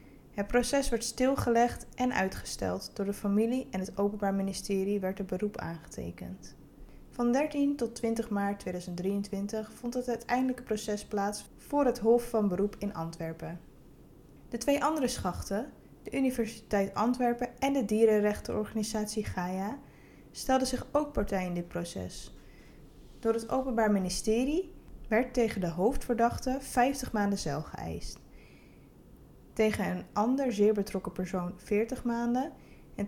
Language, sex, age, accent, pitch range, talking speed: Dutch, female, 20-39, Dutch, 195-240 Hz, 135 wpm